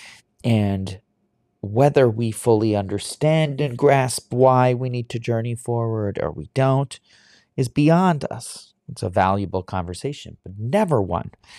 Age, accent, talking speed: 40-59, American, 135 wpm